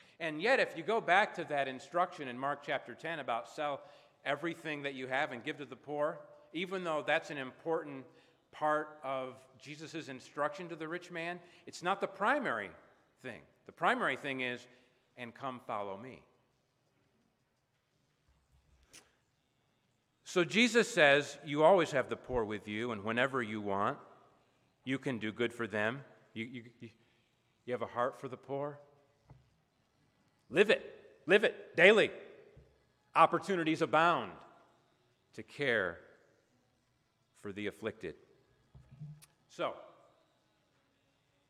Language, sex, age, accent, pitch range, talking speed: English, male, 50-69, American, 125-160 Hz, 135 wpm